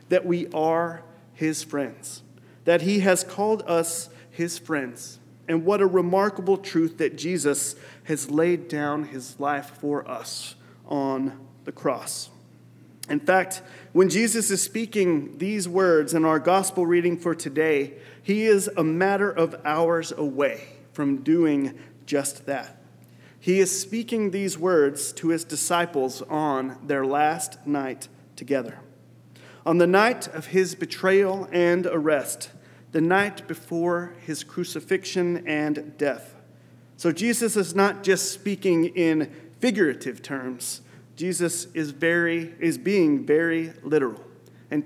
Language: English